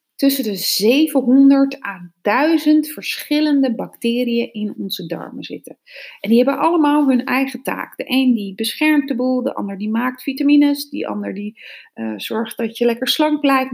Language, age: Dutch, 30-49